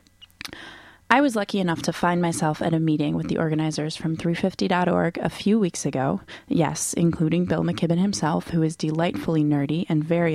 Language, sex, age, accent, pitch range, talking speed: English, female, 20-39, American, 150-175 Hz, 175 wpm